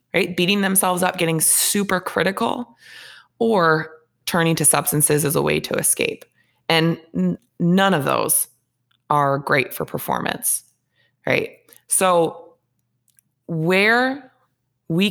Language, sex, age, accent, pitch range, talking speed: English, female, 20-39, American, 145-185 Hz, 115 wpm